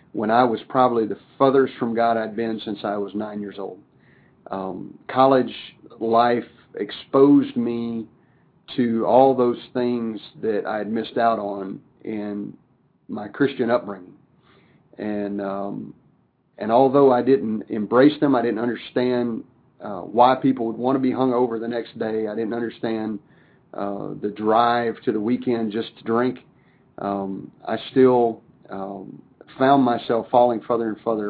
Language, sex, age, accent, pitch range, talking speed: English, male, 40-59, American, 110-130 Hz, 155 wpm